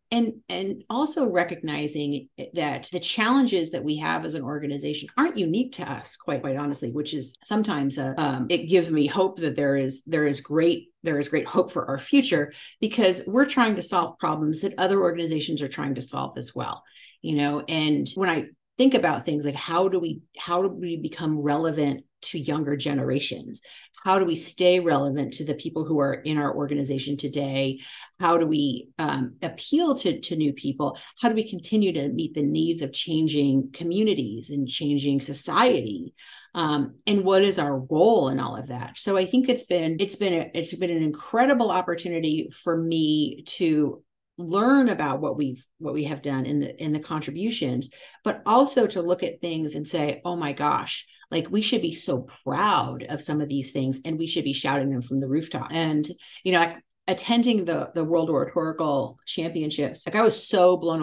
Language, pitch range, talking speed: English, 145-185 Hz, 195 wpm